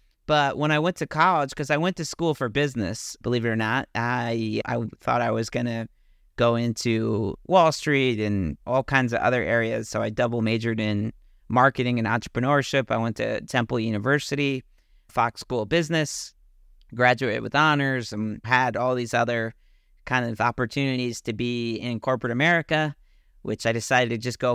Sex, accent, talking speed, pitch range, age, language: male, American, 180 wpm, 115-140 Hz, 40-59, English